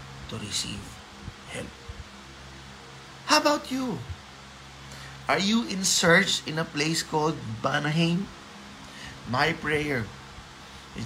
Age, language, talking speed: 20-39, Filipino, 100 wpm